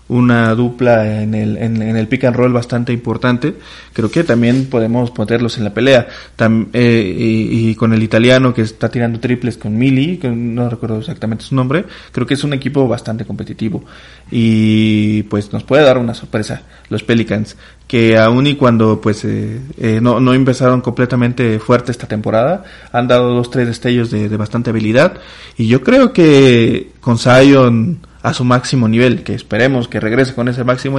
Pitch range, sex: 110-130 Hz, male